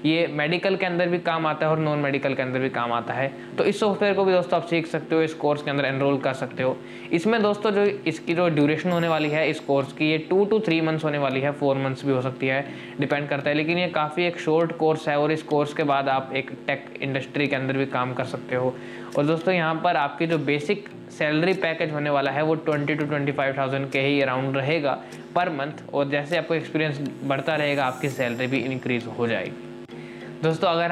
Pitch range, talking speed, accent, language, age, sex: 140-165 Hz, 235 wpm, native, Hindi, 20-39, male